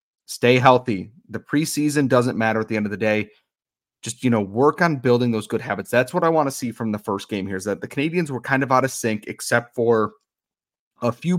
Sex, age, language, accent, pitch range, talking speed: male, 30-49, English, American, 100-125 Hz, 240 wpm